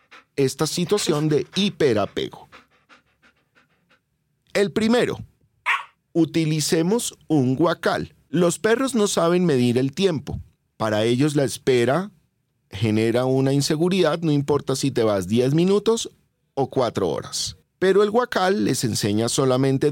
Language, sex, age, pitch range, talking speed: Spanish, male, 40-59, 125-180 Hz, 120 wpm